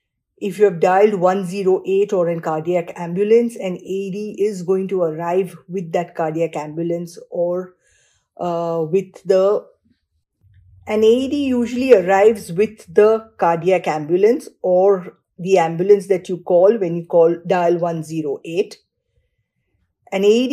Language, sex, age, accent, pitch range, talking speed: English, female, 50-69, Indian, 175-210 Hz, 125 wpm